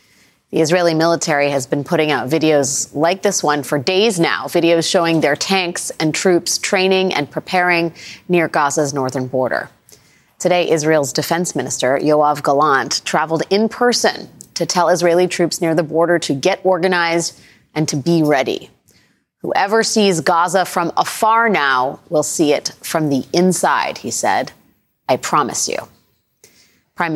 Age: 30-49